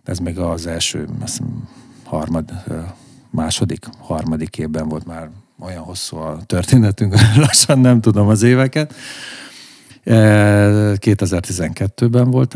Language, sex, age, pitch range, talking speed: Hungarian, male, 50-69, 80-110 Hz, 110 wpm